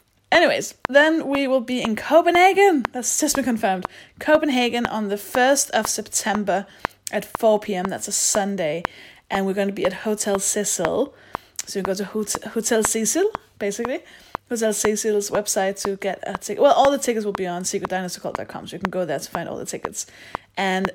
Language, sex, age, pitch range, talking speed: English, female, 20-39, 190-240 Hz, 180 wpm